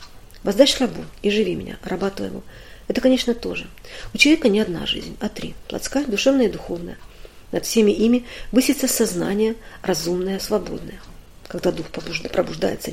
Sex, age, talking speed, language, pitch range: female, 40-59, 145 wpm, Russian, 195-245 Hz